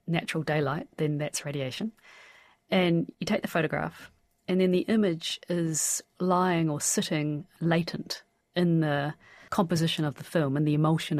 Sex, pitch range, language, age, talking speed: female, 150-175 Hz, English, 40-59, 150 wpm